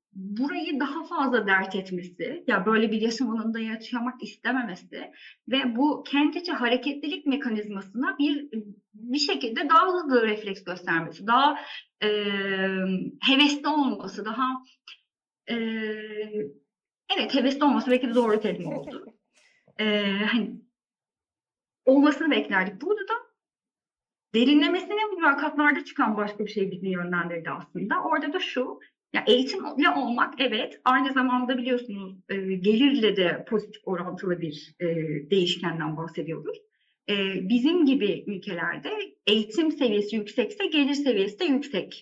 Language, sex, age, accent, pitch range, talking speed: Turkish, female, 30-49, native, 205-295 Hz, 120 wpm